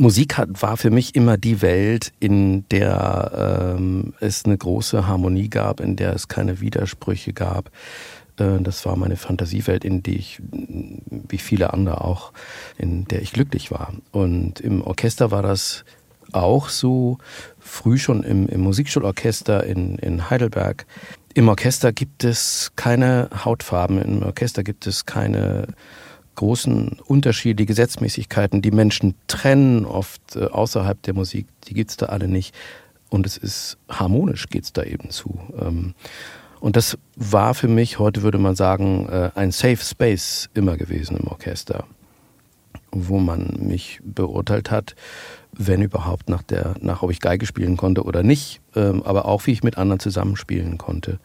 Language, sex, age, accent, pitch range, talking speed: German, male, 50-69, German, 95-115 Hz, 150 wpm